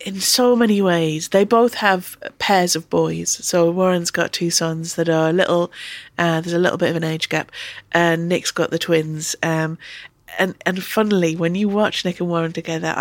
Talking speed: 210 wpm